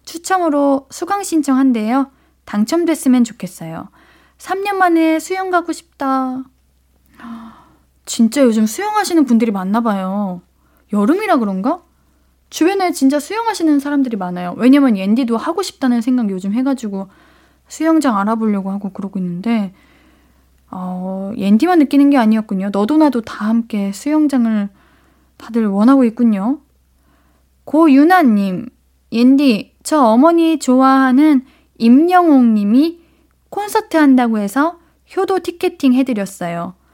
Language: Korean